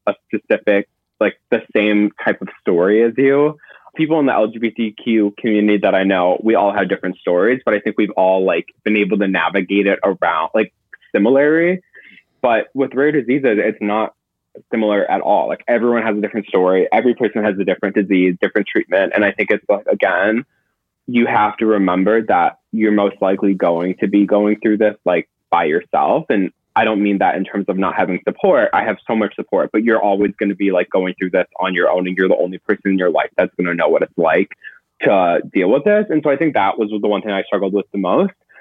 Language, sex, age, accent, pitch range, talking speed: English, male, 20-39, American, 100-120 Hz, 225 wpm